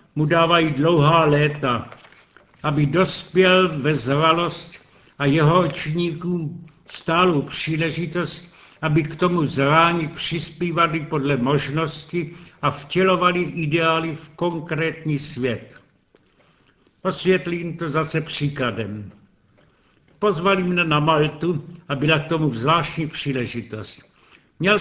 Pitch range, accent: 145-170 Hz, native